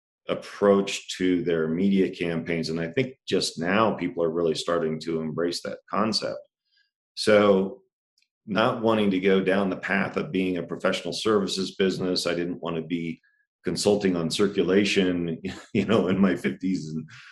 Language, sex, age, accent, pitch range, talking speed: English, male, 40-59, American, 85-100 Hz, 160 wpm